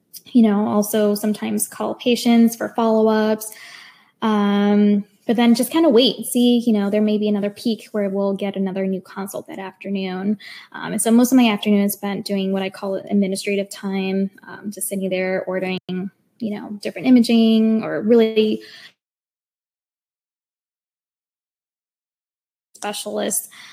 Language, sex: English, female